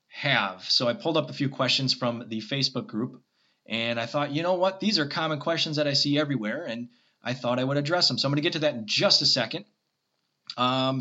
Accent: American